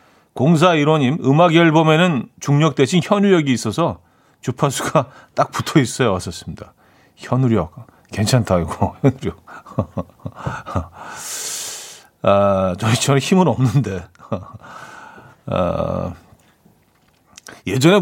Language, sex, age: Korean, male, 40-59